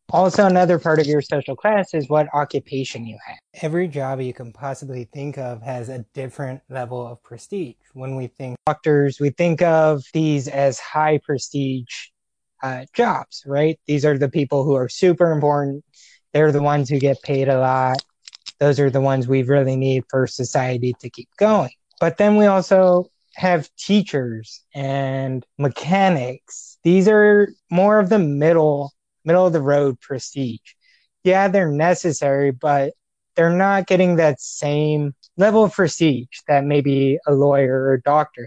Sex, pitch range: male, 135-170 Hz